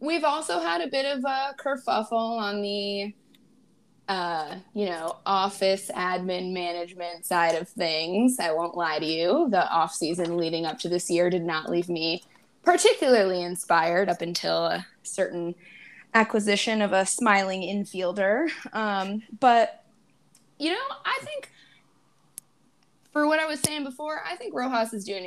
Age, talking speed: 20-39, 150 wpm